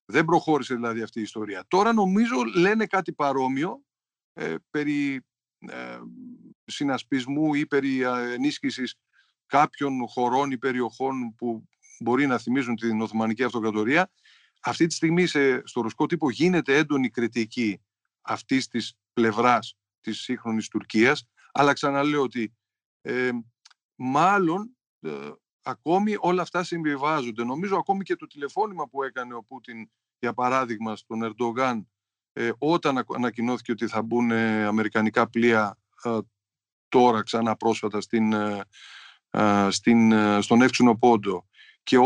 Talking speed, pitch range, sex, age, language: 120 wpm, 110-150 Hz, male, 50-69, Greek